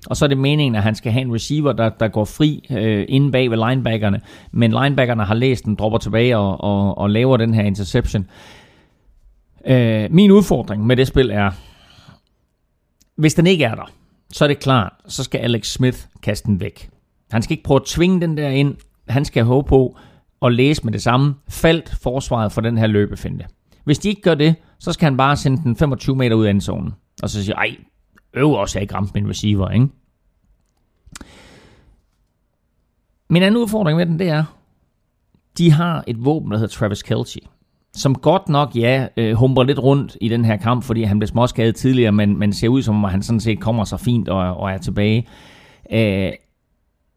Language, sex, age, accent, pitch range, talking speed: Danish, male, 30-49, native, 105-140 Hz, 200 wpm